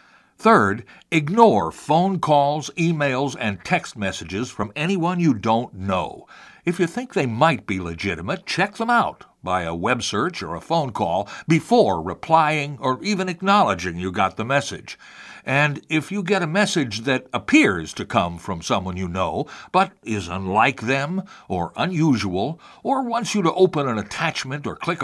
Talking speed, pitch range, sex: 165 wpm, 105-170 Hz, male